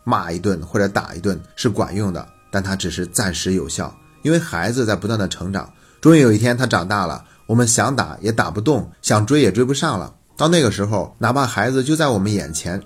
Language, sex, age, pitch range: Chinese, male, 30-49, 95-125 Hz